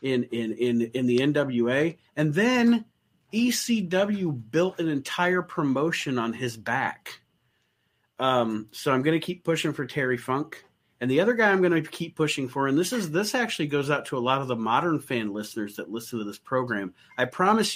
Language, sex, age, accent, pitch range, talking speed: English, male, 30-49, American, 120-155 Hz, 190 wpm